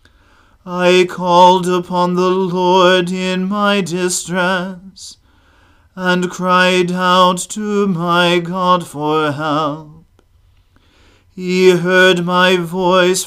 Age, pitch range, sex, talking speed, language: 40-59, 155-185 Hz, male, 90 wpm, English